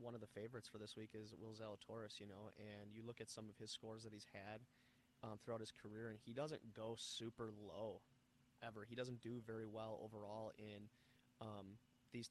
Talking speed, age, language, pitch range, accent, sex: 210 wpm, 20-39, English, 110-125 Hz, American, male